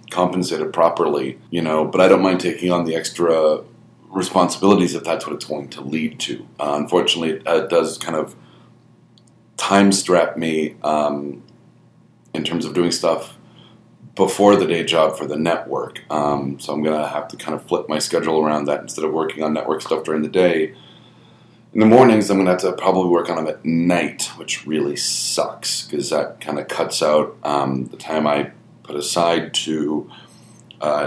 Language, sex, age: English, male, 30-49